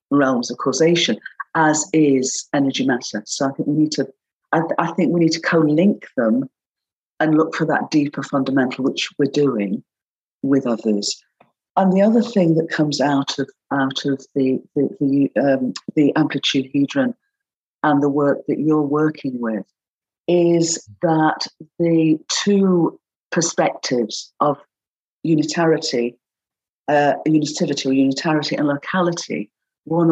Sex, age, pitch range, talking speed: female, 50-69, 140-165 Hz, 140 wpm